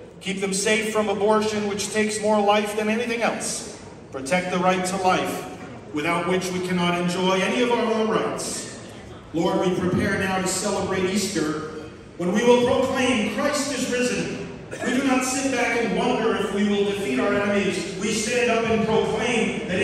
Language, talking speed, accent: English, 180 wpm, American